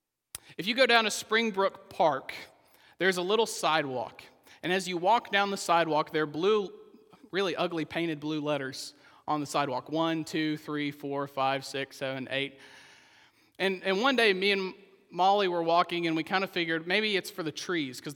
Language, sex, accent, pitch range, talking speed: English, male, American, 150-200 Hz, 190 wpm